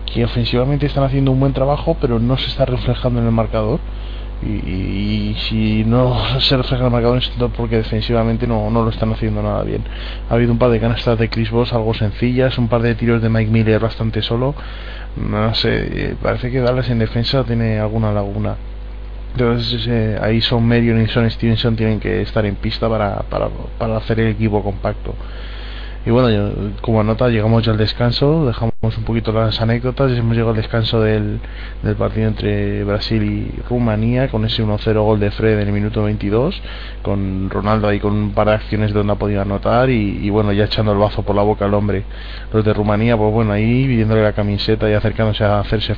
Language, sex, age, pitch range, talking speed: Spanish, male, 20-39, 105-120 Hz, 205 wpm